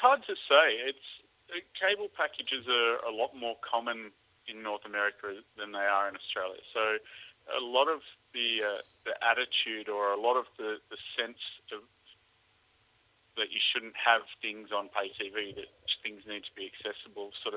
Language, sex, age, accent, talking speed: English, male, 30-49, Australian, 175 wpm